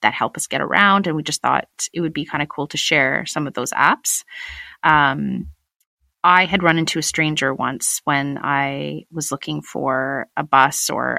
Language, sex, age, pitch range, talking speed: English, female, 30-49, 145-190 Hz, 200 wpm